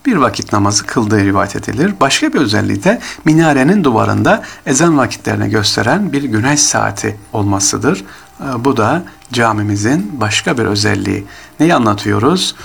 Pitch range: 100-125 Hz